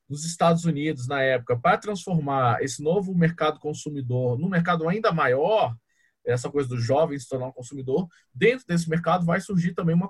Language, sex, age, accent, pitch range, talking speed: Portuguese, male, 20-39, Brazilian, 140-180 Hz, 180 wpm